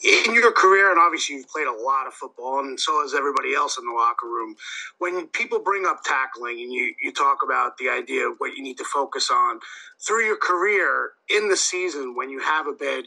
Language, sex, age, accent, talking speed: English, male, 30-49, American, 230 wpm